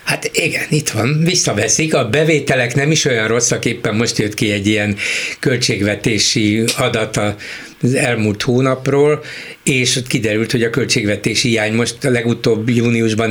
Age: 60-79